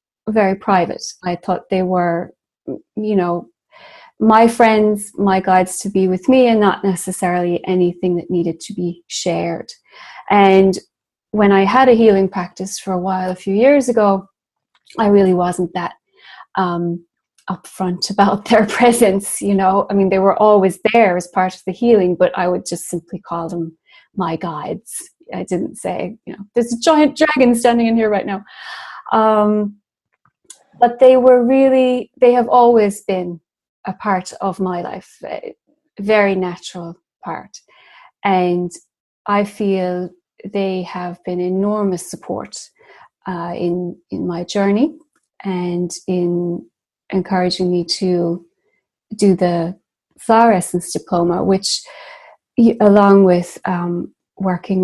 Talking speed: 140 wpm